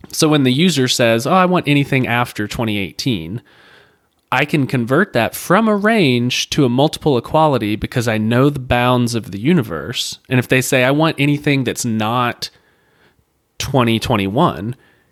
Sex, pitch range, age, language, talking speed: male, 110-140 Hz, 30-49, English, 160 wpm